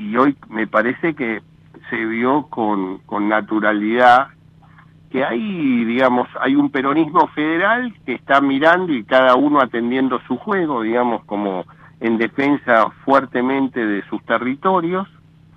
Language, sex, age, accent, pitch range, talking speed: Italian, male, 60-79, Argentinian, 110-150 Hz, 130 wpm